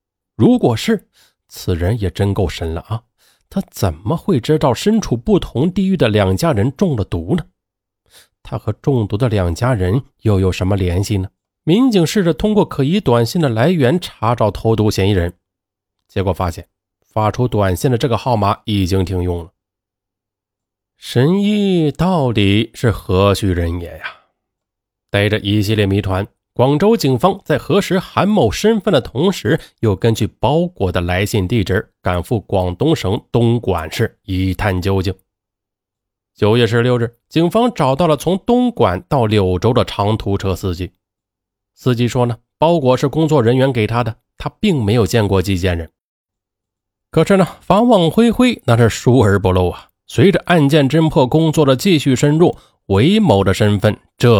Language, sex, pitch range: Chinese, male, 95-145 Hz